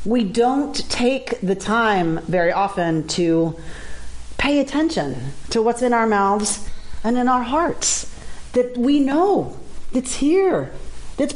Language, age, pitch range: English, 40-59, 210-305 Hz